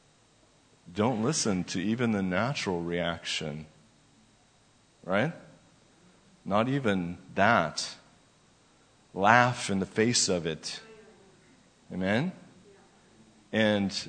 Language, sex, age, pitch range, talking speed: English, male, 50-69, 100-120 Hz, 80 wpm